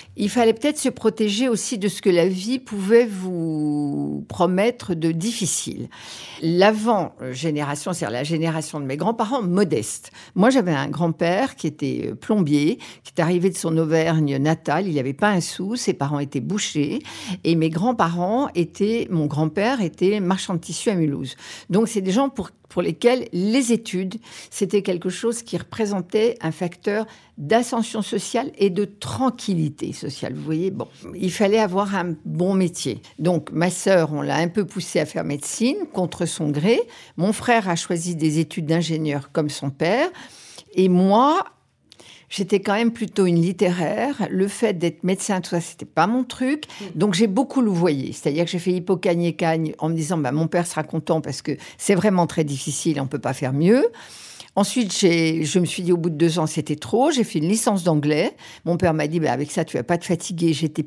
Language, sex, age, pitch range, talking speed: French, female, 50-69, 160-220 Hz, 195 wpm